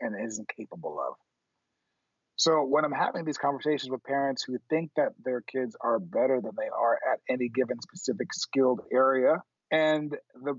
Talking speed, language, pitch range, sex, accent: 170 wpm, English, 130-155 Hz, male, American